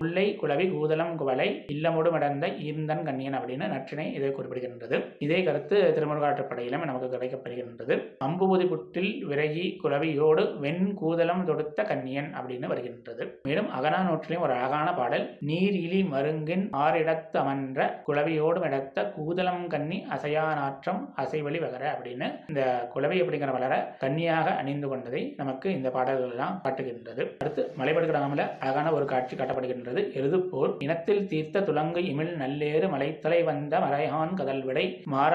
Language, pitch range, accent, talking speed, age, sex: Tamil, 135-170 Hz, native, 115 wpm, 20-39, male